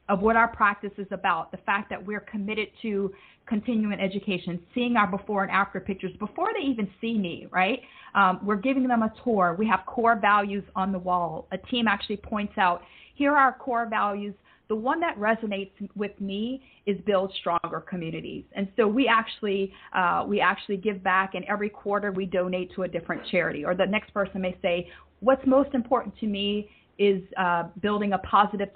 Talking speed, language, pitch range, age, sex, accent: 195 wpm, English, 185-220 Hz, 40-59, female, American